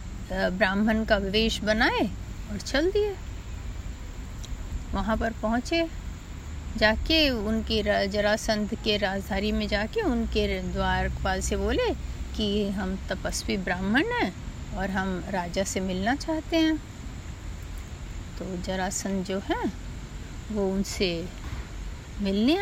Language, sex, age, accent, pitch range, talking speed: Hindi, female, 30-49, native, 195-270 Hz, 105 wpm